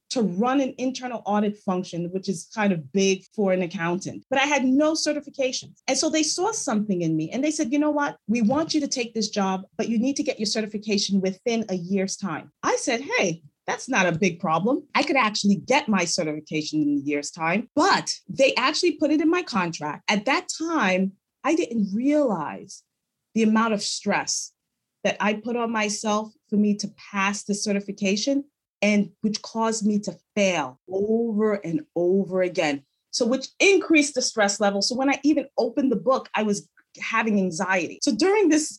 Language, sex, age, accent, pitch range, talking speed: English, female, 30-49, American, 195-275 Hz, 195 wpm